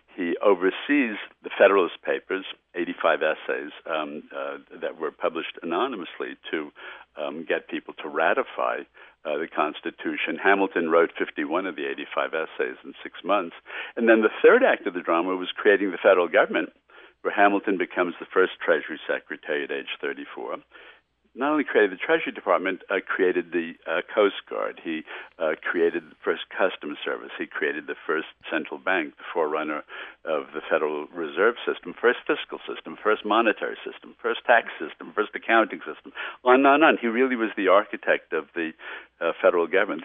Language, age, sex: English, 60-79, male